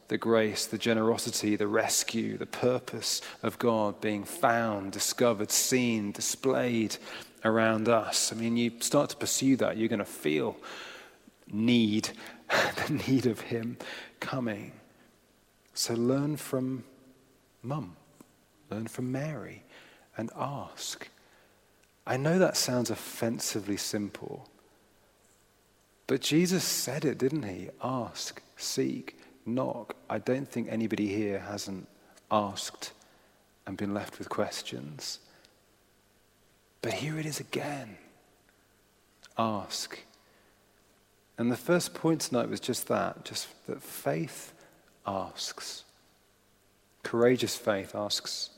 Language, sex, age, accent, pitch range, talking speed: English, male, 30-49, British, 100-120 Hz, 110 wpm